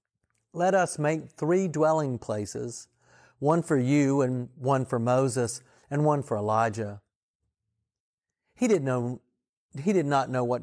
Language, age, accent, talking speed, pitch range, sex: English, 50-69, American, 130 wpm, 115-155 Hz, male